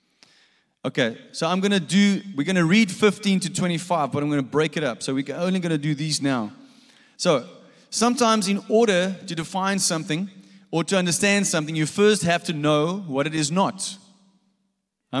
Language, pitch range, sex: English, 170-225 Hz, male